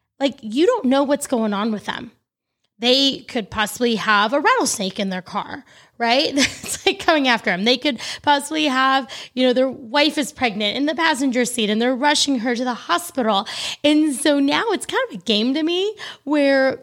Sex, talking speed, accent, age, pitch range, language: female, 200 wpm, American, 20-39, 220-280 Hz, English